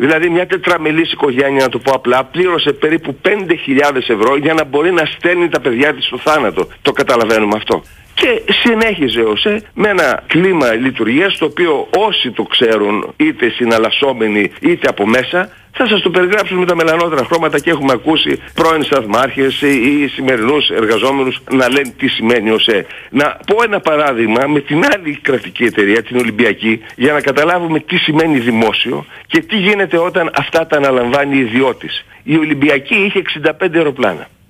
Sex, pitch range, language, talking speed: male, 130-180 Hz, Greek, 165 wpm